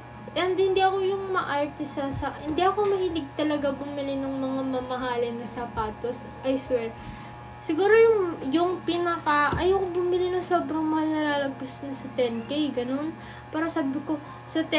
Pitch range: 250-330 Hz